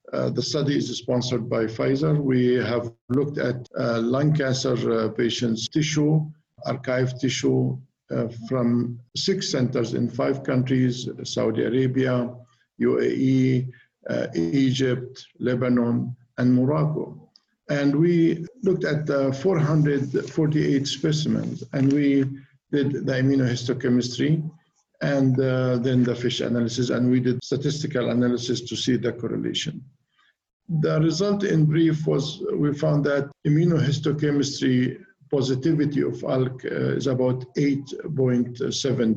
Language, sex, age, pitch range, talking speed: English, male, 50-69, 125-150 Hz, 120 wpm